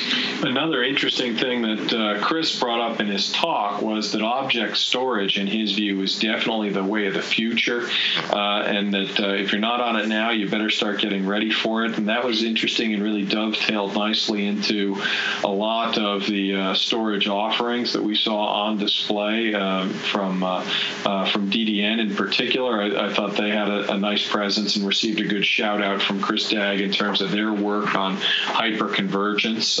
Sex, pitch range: male, 100-110 Hz